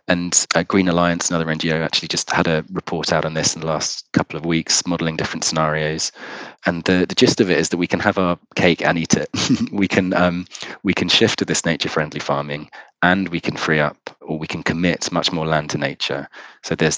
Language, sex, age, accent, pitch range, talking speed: English, male, 20-39, British, 75-85 Hz, 225 wpm